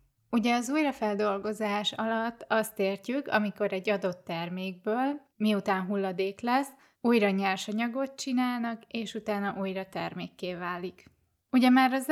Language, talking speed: Hungarian, 120 wpm